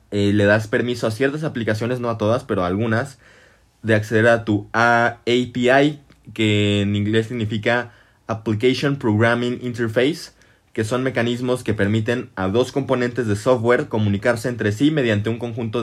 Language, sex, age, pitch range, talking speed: Spanish, male, 20-39, 105-130 Hz, 155 wpm